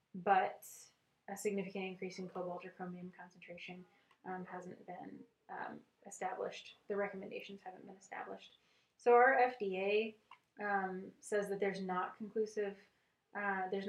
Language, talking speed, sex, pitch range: English, 130 wpm, female, 185-205 Hz